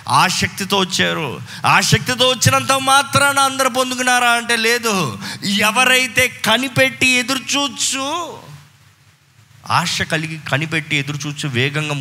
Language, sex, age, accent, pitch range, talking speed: Telugu, male, 30-49, native, 130-215 Hz, 95 wpm